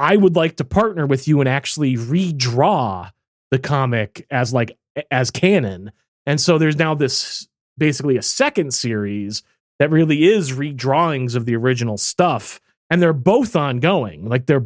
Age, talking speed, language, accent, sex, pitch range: 30-49, 160 wpm, English, American, male, 120-160 Hz